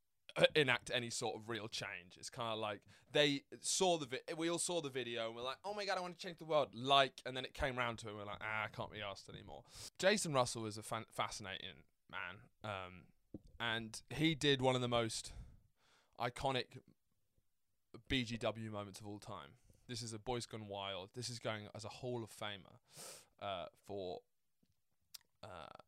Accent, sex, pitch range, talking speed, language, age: British, male, 100-130 Hz, 190 wpm, English, 20-39